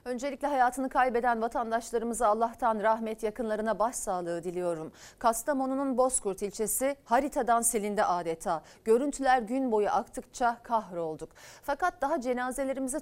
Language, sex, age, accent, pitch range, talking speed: Turkish, female, 40-59, native, 210-275 Hz, 105 wpm